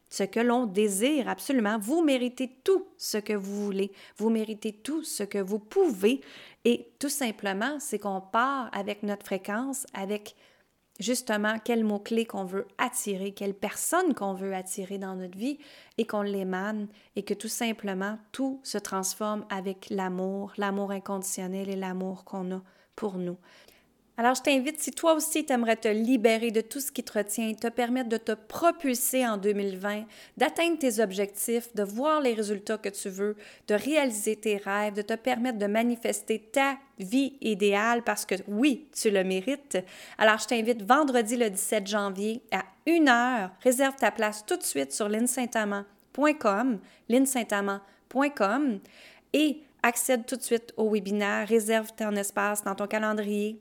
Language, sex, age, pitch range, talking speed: French, female, 30-49, 200-255 Hz, 165 wpm